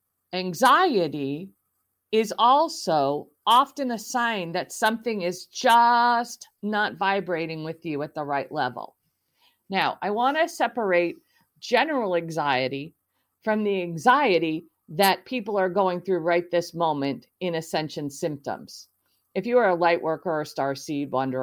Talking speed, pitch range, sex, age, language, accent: 140 wpm, 160-220 Hz, female, 50-69, English, American